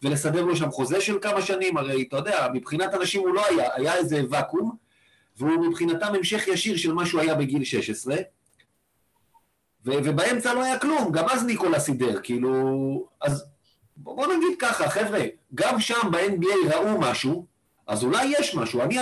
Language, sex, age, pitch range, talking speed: Hebrew, male, 40-59, 135-175 Hz, 165 wpm